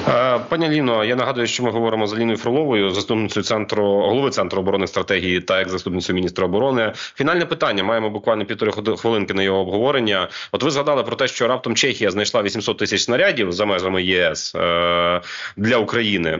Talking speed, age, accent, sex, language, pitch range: 170 wpm, 30-49, native, male, Ukrainian, 95-120 Hz